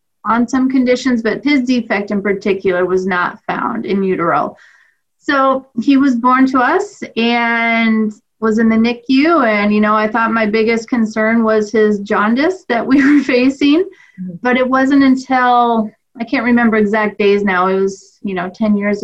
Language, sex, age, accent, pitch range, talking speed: English, female, 30-49, American, 200-240 Hz, 175 wpm